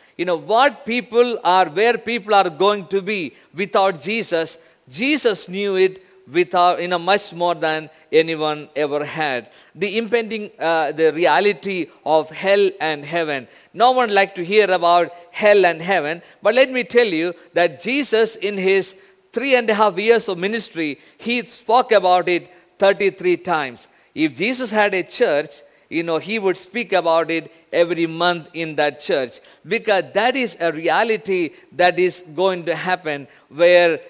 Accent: Indian